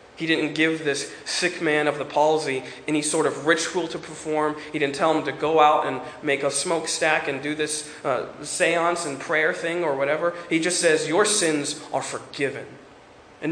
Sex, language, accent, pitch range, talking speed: male, English, American, 150-180 Hz, 195 wpm